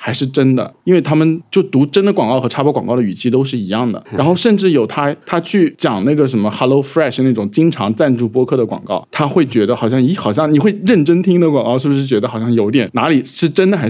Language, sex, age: Chinese, male, 20-39